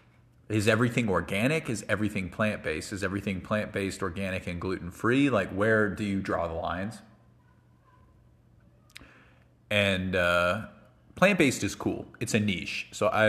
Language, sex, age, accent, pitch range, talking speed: English, male, 30-49, American, 90-110 Hz, 130 wpm